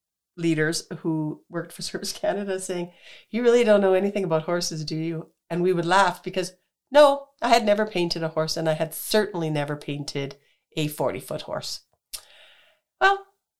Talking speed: 170 wpm